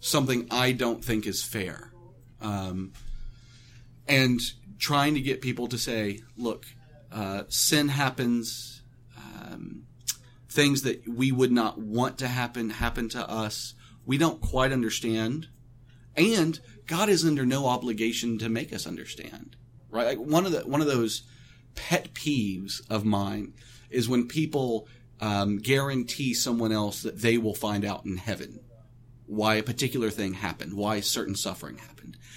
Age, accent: 40-59, American